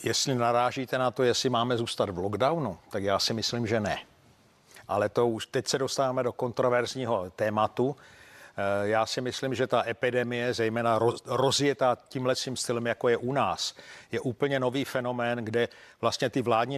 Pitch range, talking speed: 115-135 Hz, 165 wpm